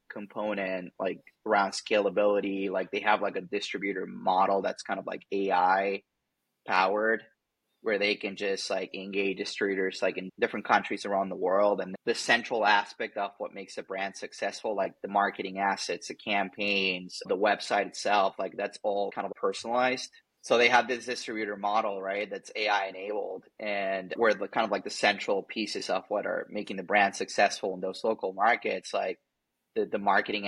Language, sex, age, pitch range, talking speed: English, male, 20-39, 95-105 Hz, 175 wpm